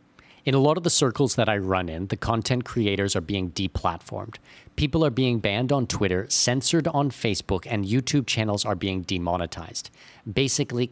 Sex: male